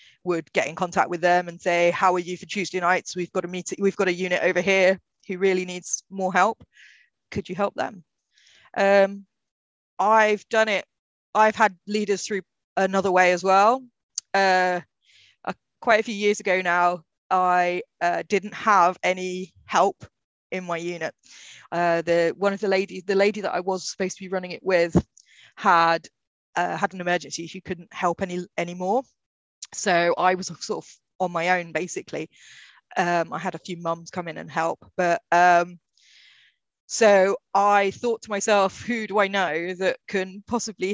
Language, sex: English, female